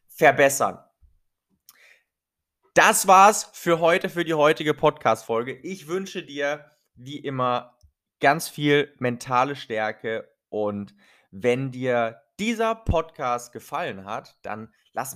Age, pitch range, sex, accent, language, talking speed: 20-39, 110-145 Hz, male, German, German, 105 wpm